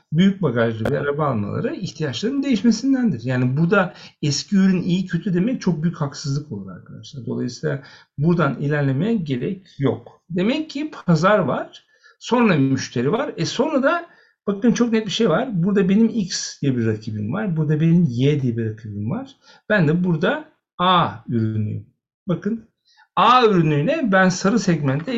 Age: 60-79